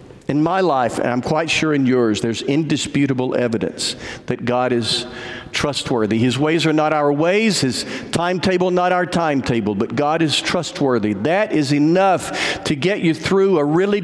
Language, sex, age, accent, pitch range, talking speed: English, male, 50-69, American, 135-180 Hz, 170 wpm